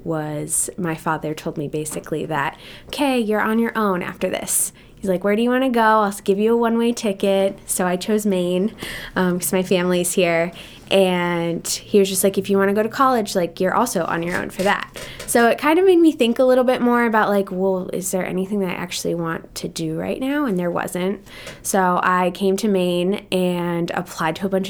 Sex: female